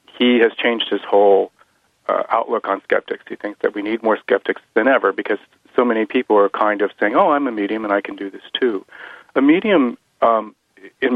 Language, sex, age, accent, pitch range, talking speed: English, male, 40-59, American, 100-120 Hz, 215 wpm